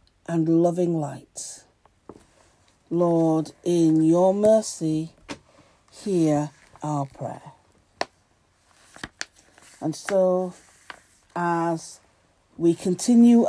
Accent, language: British, English